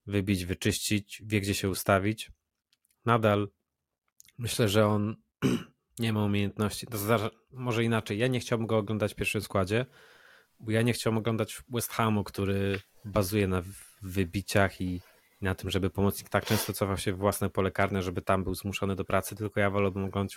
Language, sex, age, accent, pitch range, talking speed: Polish, male, 20-39, native, 100-115 Hz, 175 wpm